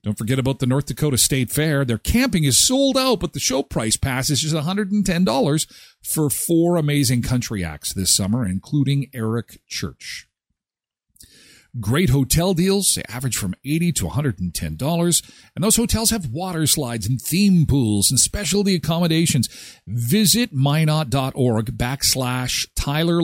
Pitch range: 125-180 Hz